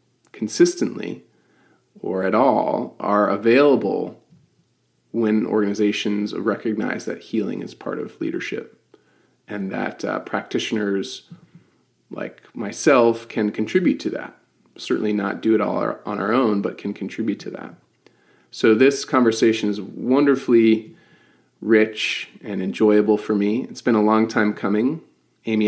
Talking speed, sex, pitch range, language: 130 wpm, male, 105-115 Hz, English